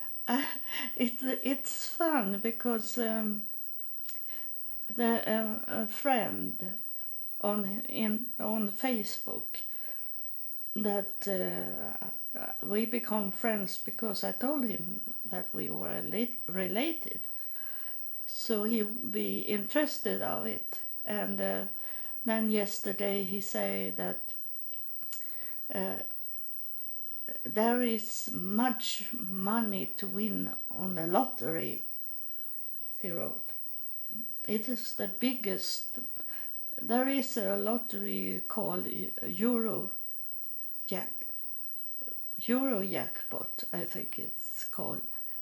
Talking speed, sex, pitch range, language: 95 wpm, female, 195-240 Hz, English